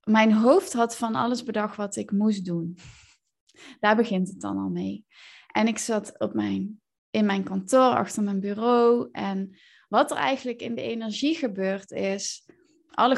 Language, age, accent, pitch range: Dutch, 20-39, Dutch, 200-245 Hz